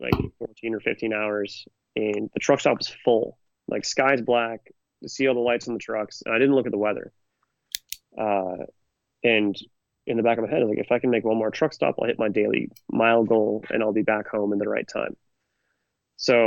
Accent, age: American, 30-49